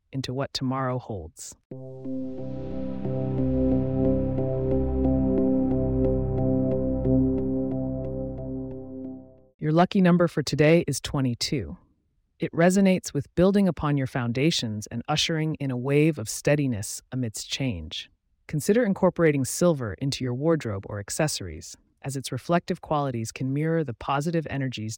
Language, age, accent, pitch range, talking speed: English, 30-49, American, 105-160 Hz, 105 wpm